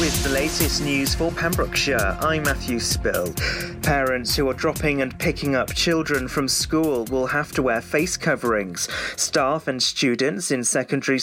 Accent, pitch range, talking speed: British, 125-150 Hz, 160 wpm